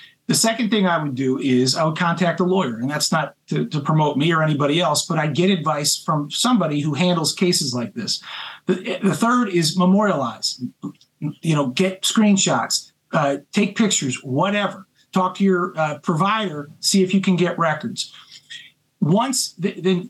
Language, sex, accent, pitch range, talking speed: English, male, American, 155-200 Hz, 180 wpm